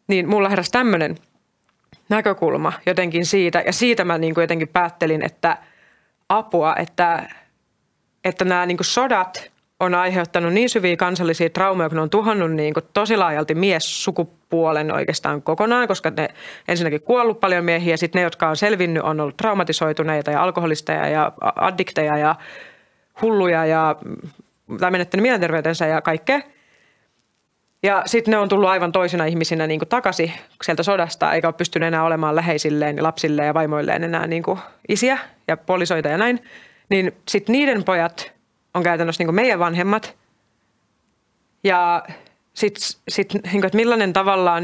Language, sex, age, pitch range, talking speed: Finnish, female, 30-49, 160-195 Hz, 140 wpm